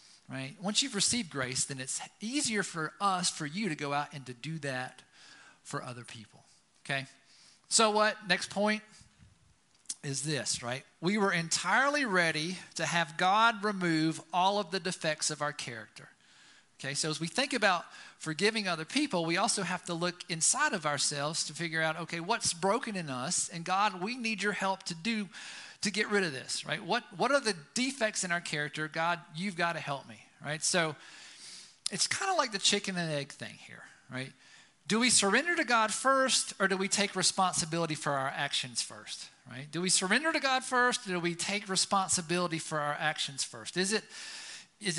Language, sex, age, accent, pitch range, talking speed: English, male, 40-59, American, 150-210 Hz, 195 wpm